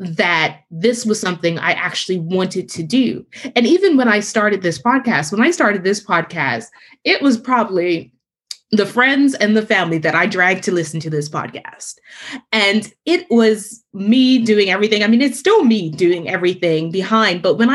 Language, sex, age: English, female, 20-39